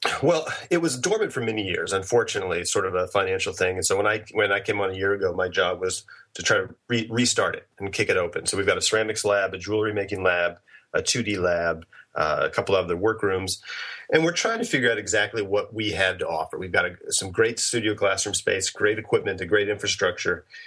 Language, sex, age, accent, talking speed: English, male, 30-49, American, 235 wpm